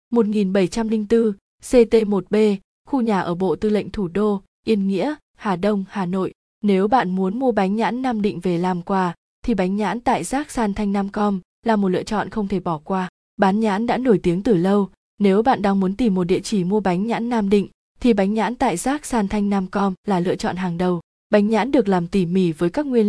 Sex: female